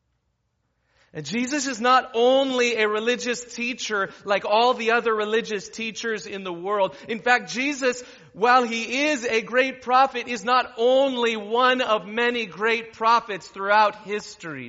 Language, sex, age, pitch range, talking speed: English, male, 40-59, 140-235 Hz, 145 wpm